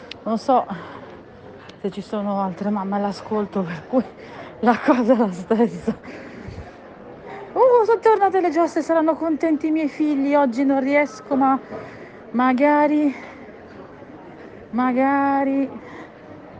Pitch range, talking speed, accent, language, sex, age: 215-270 Hz, 115 wpm, native, Italian, female, 40-59